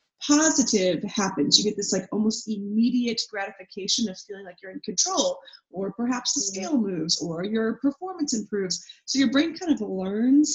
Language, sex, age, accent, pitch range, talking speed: English, female, 30-49, American, 195-255 Hz, 170 wpm